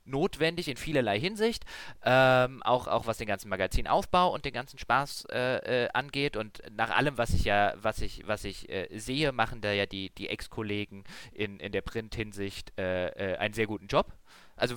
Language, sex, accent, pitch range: German, male, German, 110-150 Hz